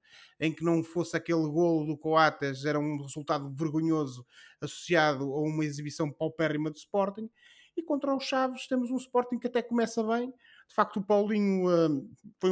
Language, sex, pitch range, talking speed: Portuguese, male, 130-180 Hz, 175 wpm